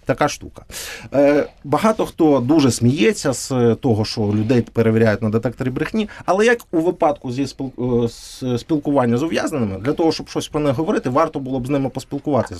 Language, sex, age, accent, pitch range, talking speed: Ukrainian, male, 30-49, native, 125-175 Hz, 170 wpm